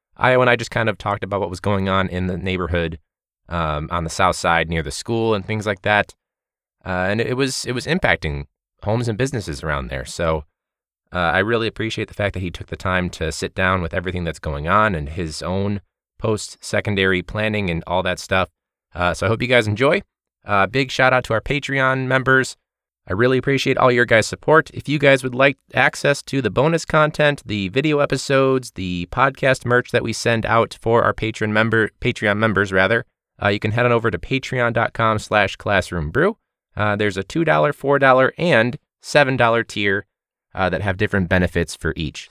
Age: 20-39